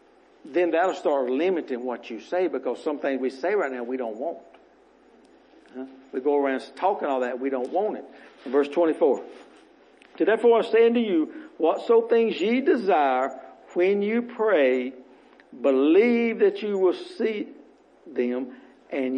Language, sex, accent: English, male, American